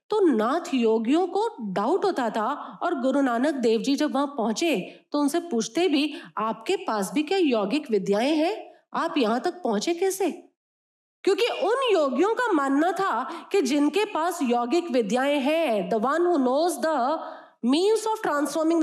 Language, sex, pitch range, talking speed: Hindi, female, 235-325 Hz, 165 wpm